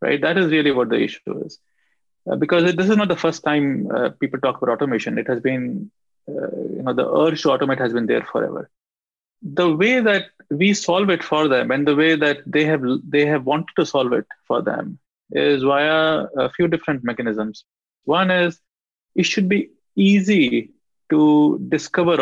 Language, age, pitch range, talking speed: English, 30-49, 140-180 Hz, 195 wpm